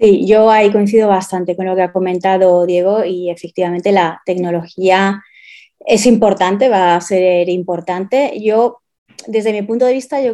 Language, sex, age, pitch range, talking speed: Spanish, female, 20-39, 185-215 Hz, 165 wpm